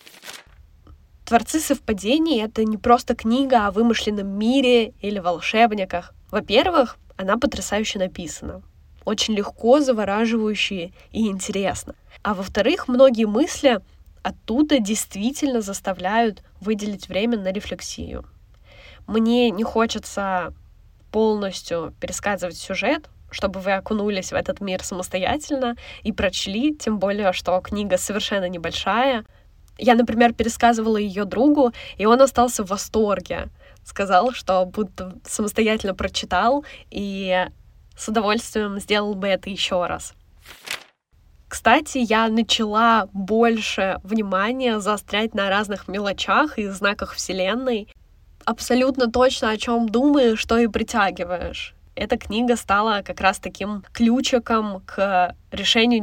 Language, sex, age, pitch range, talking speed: Russian, female, 10-29, 195-235 Hz, 110 wpm